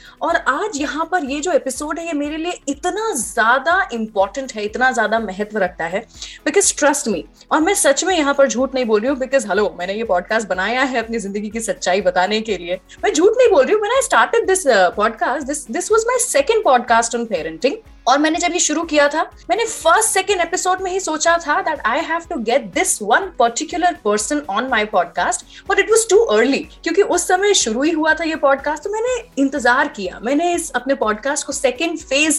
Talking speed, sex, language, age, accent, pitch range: 155 wpm, female, Hindi, 20-39, native, 230-335 Hz